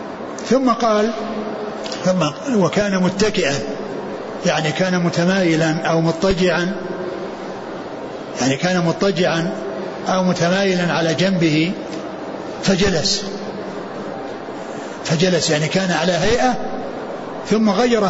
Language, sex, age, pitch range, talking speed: Arabic, male, 60-79, 175-220 Hz, 85 wpm